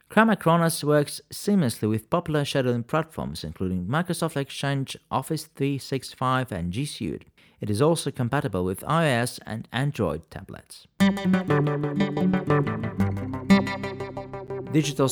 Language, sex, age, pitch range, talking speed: English, male, 40-59, 110-145 Hz, 105 wpm